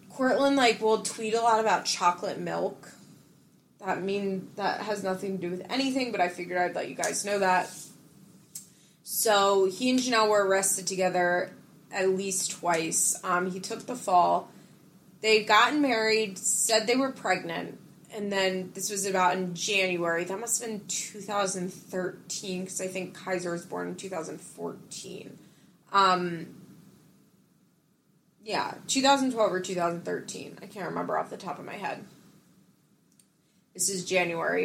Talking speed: 150 wpm